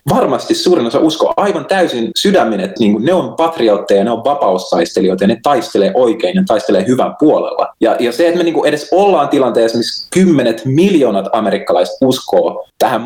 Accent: native